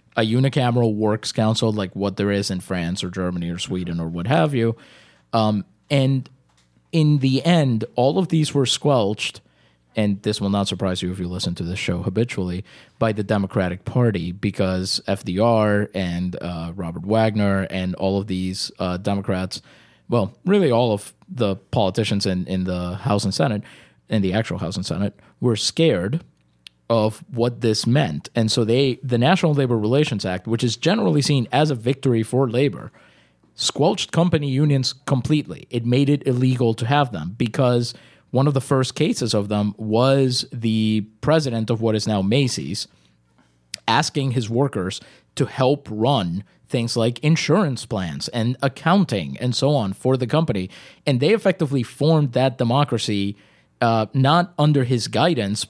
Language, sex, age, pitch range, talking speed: English, male, 20-39, 100-135 Hz, 165 wpm